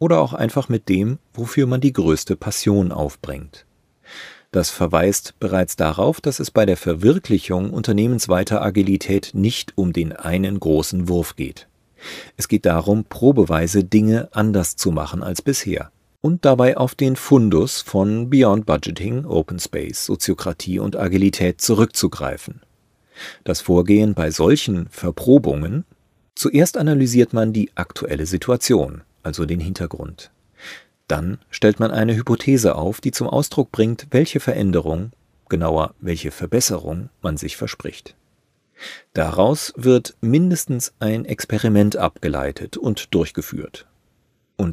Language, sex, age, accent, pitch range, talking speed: German, male, 40-59, German, 85-115 Hz, 125 wpm